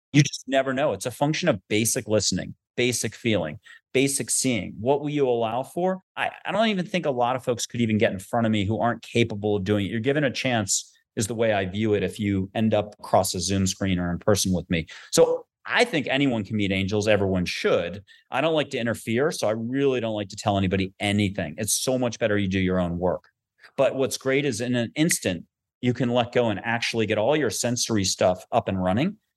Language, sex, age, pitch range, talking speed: English, male, 30-49, 105-130 Hz, 240 wpm